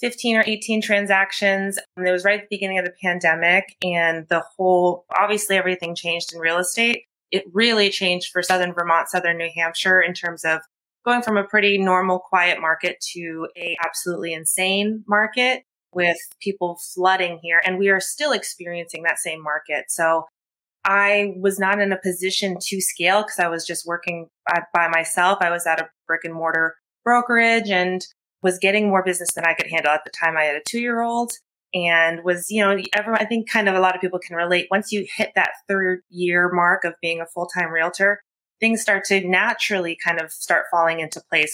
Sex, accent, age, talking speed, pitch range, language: female, American, 20-39, 200 wpm, 165-195 Hz, English